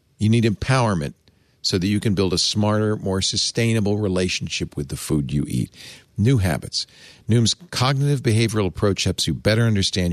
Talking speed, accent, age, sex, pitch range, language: 165 wpm, American, 50-69, male, 95-145 Hz, English